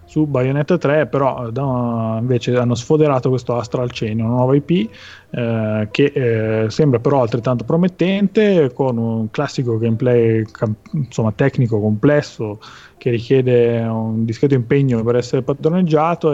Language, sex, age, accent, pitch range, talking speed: Italian, male, 30-49, native, 120-145 Hz, 130 wpm